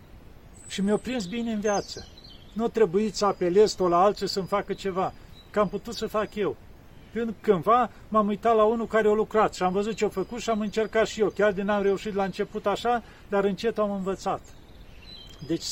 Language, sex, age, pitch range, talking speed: Romanian, male, 50-69, 175-210 Hz, 210 wpm